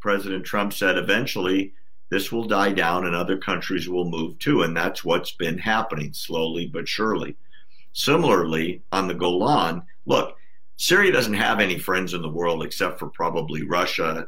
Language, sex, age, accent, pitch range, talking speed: English, male, 50-69, American, 80-95 Hz, 165 wpm